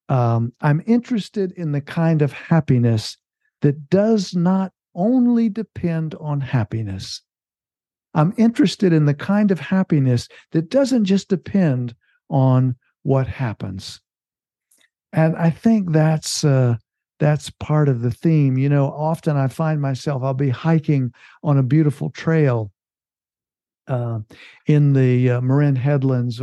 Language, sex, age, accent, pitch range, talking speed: English, male, 60-79, American, 135-175 Hz, 130 wpm